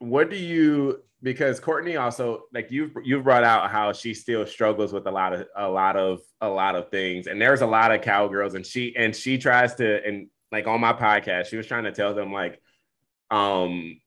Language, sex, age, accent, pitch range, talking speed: English, male, 20-39, American, 95-115 Hz, 220 wpm